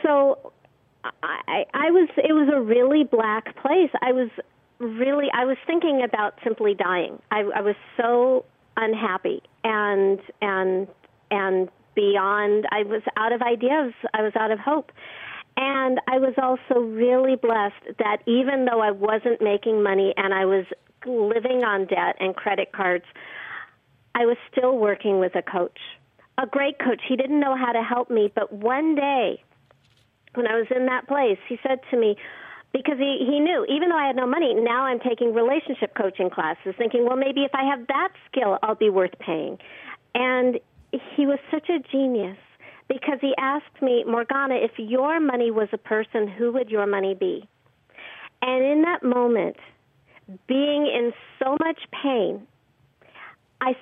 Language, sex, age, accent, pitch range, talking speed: English, female, 50-69, American, 210-270 Hz, 165 wpm